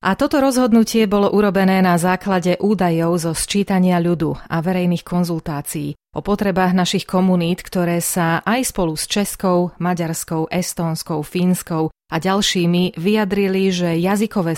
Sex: female